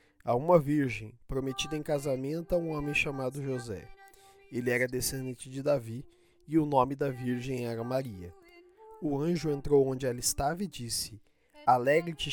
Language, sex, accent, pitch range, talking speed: Portuguese, male, Brazilian, 130-160 Hz, 155 wpm